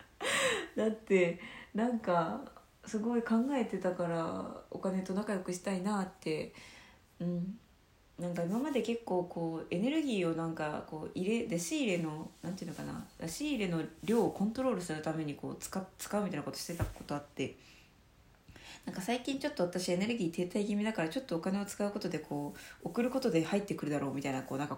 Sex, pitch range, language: female, 160-220 Hz, Japanese